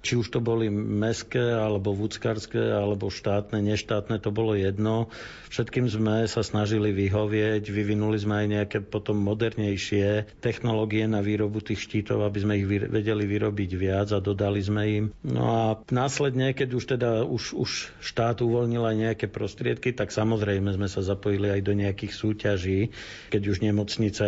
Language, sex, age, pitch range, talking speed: Slovak, male, 50-69, 100-115 Hz, 160 wpm